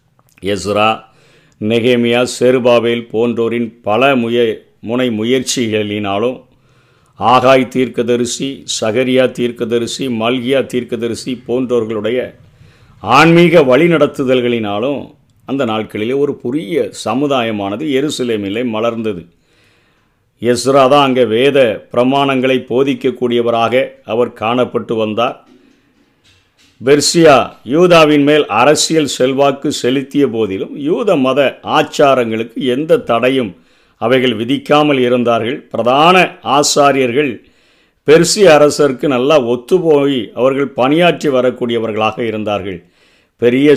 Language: Tamil